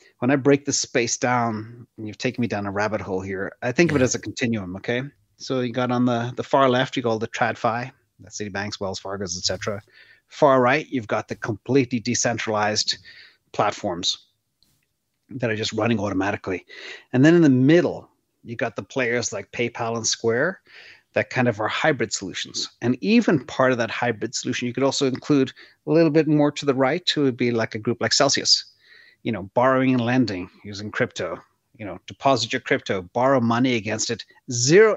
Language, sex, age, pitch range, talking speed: English, male, 30-49, 110-140 Hz, 200 wpm